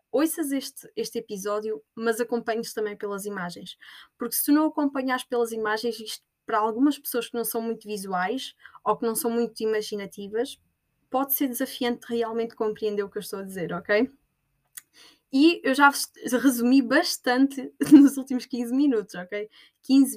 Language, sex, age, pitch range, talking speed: Portuguese, female, 10-29, 210-245 Hz, 160 wpm